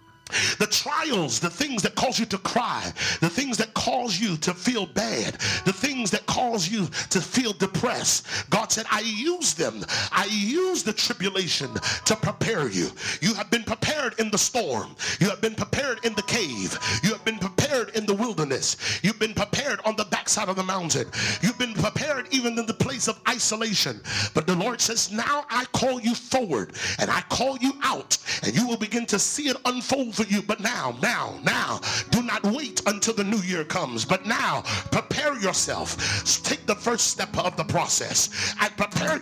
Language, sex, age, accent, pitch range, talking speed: English, male, 40-59, American, 190-245 Hz, 195 wpm